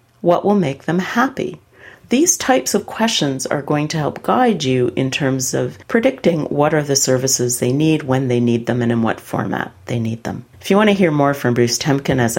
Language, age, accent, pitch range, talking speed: English, 50-69, American, 120-150 Hz, 225 wpm